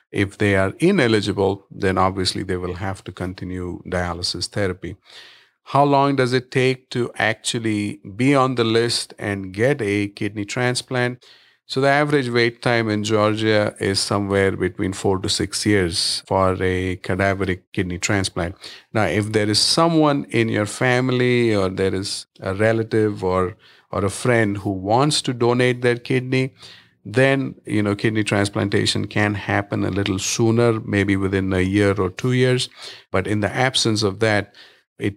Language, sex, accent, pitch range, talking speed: English, male, Indian, 95-115 Hz, 160 wpm